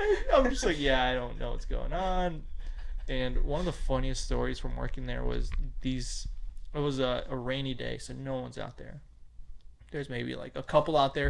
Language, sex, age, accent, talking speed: English, male, 20-39, American, 205 wpm